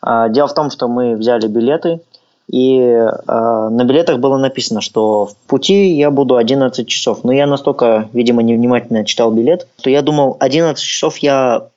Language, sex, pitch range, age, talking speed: Russian, male, 115-145 Hz, 20-39, 170 wpm